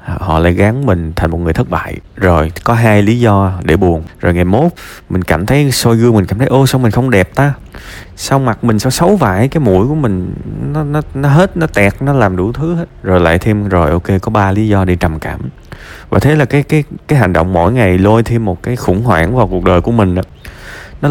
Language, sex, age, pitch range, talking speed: Vietnamese, male, 20-39, 90-120 Hz, 255 wpm